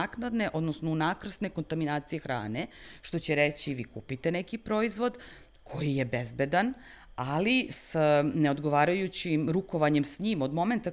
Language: Croatian